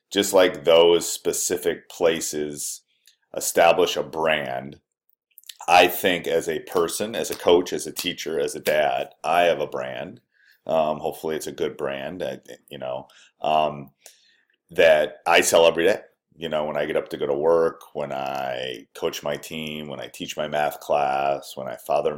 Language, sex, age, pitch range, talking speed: English, male, 30-49, 75-90 Hz, 170 wpm